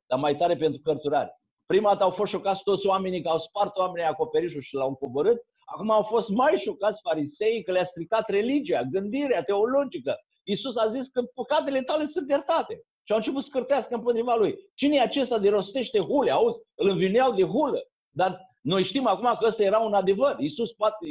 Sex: male